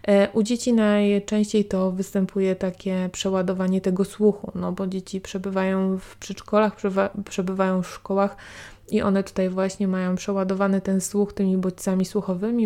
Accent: native